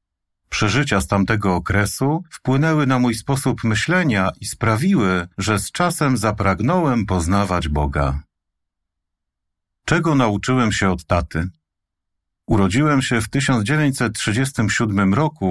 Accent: native